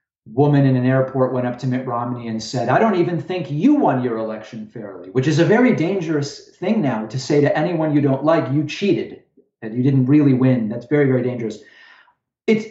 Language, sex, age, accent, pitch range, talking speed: English, male, 40-59, American, 120-155 Hz, 215 wpm